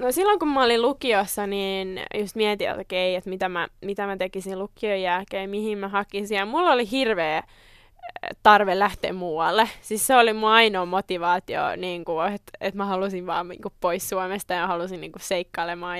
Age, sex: 10-29, female